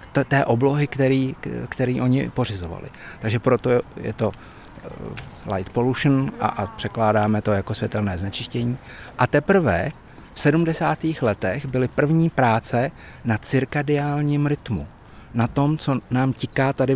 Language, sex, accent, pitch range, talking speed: Czech, male, native, 115-140 Hz, 130 wpm